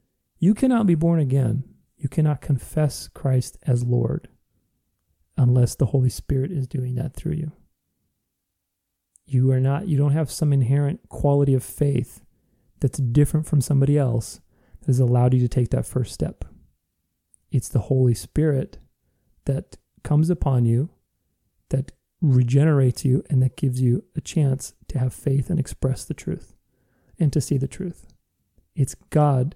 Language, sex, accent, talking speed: English, male, American, 155 wpm